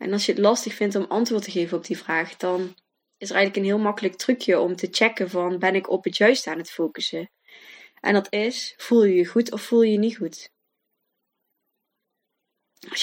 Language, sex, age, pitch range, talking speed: Dutch, female, 20-39, 185-215 Hz, 215 wpm